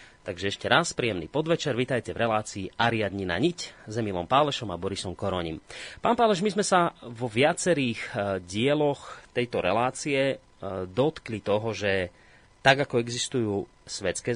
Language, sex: Slovak, male